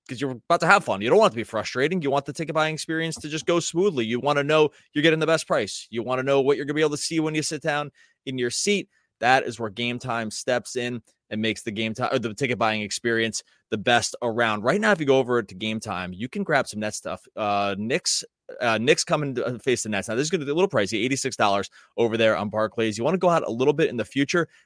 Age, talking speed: 20-39, 295 wpm